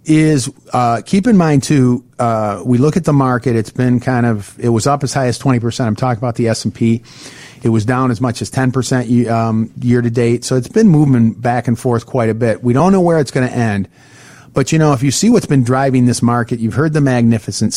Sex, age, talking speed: male, 40-59, 250 wpm